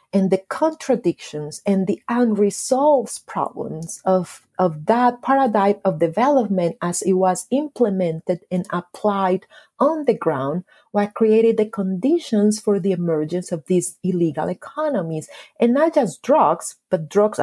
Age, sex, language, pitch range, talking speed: 40-59, female, English, 175-235 Hz, 135 wpm